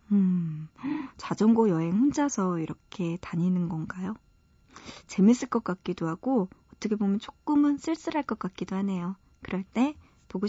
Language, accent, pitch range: Korean, native, 185-265 Hz